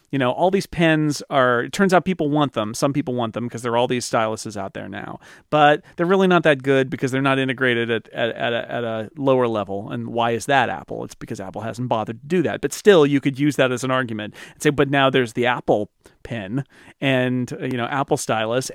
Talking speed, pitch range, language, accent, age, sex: 250 wpm, 115-145 Hz, English, American, 40-59, male